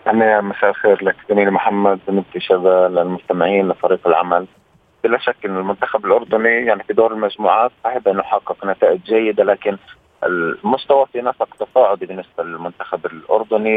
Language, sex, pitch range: Arabic, male, 100-120 Hz